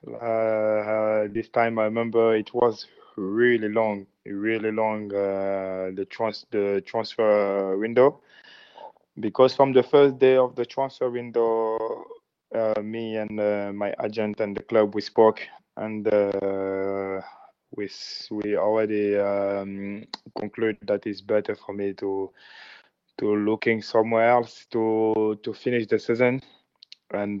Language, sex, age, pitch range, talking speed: English, male, 20-39, 105-115 Hz, 135 wpm